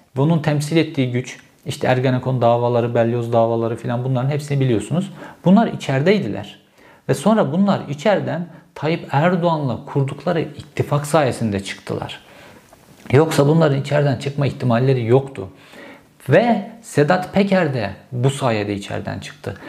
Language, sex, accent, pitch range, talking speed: Turkish, male, native, 115-155 Hz, 120 wpm